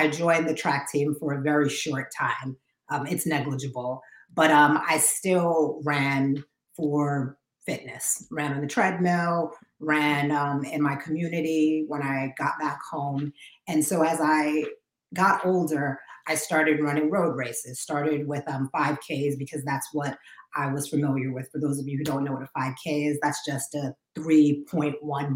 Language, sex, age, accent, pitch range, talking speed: English, female, 30-49, American, 140-160 Hz, 170 wpm